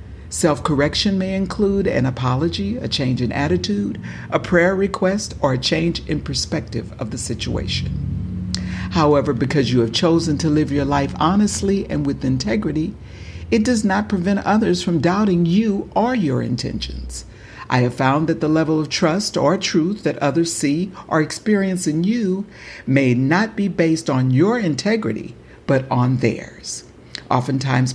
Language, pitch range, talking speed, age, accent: English, 130-180 Hz, 155 wpm, 60-79, American